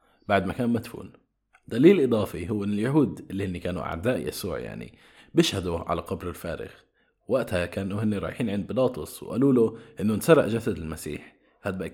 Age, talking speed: 20-39, 160 wpm